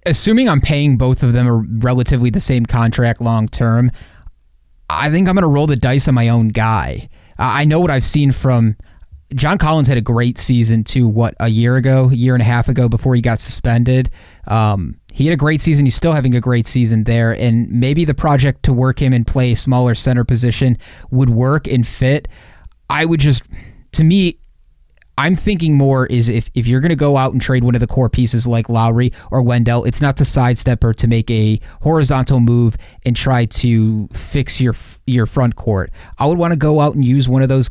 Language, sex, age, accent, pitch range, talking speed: English, male, 20-39, American, 115-135 Hz, 220 wpm